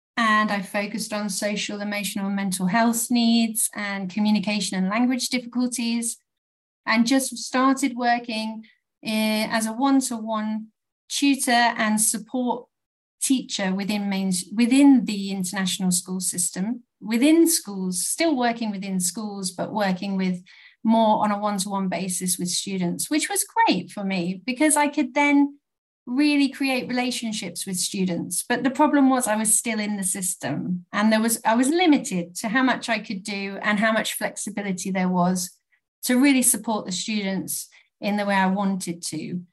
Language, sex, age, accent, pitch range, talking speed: English, female, 40-59, British, 200-245 Hz, 160 wpm